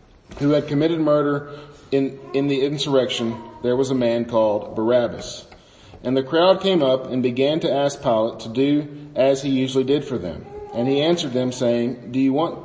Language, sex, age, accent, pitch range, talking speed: English, male, 40-59, American, 115-150 Hz, 190 wpm